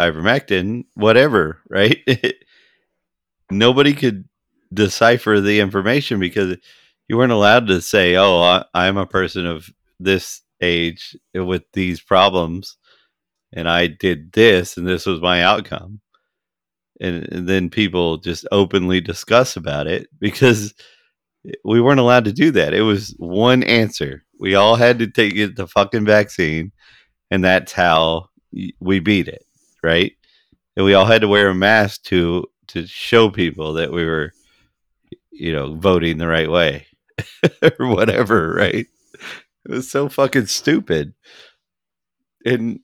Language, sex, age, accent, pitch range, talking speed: English, male, 40-59, American, 90-115 Hz, 135 wpm